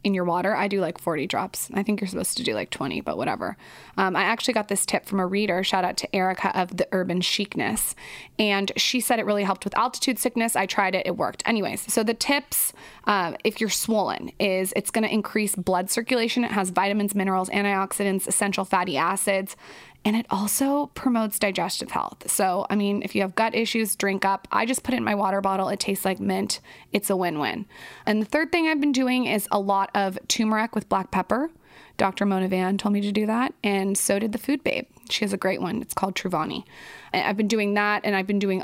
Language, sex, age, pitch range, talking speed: English, female, 20-39, 190-230 Hz, 230 wpm